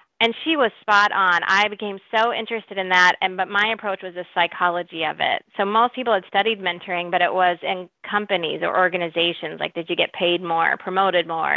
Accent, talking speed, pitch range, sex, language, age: American, 215 wpm, 180-220 Hz, female, English, 30-49